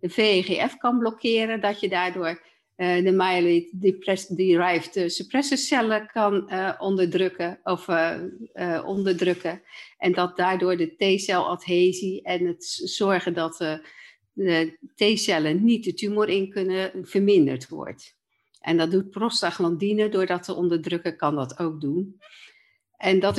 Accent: Dutch